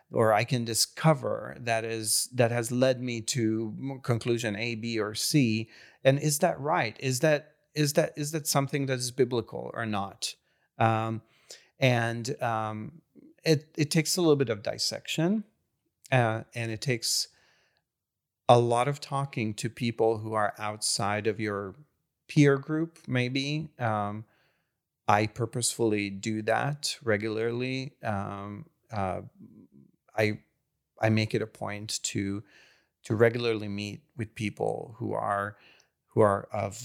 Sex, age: male, 30-49